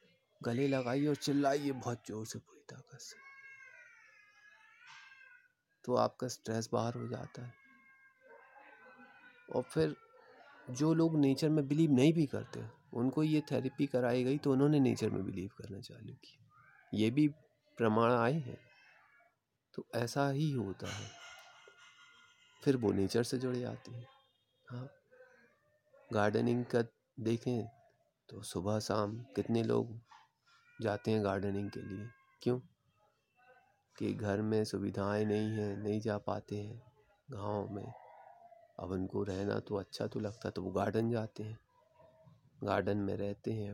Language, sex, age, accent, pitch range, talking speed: Hindi, male, 30-49, native, 105-140 Hz, 140 wpm